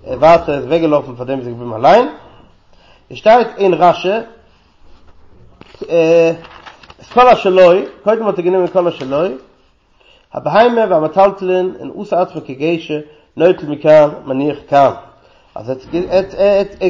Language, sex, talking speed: English, male, 130 wpm